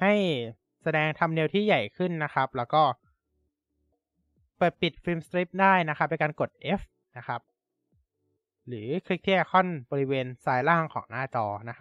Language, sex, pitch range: Thai, male, 115-160 Hz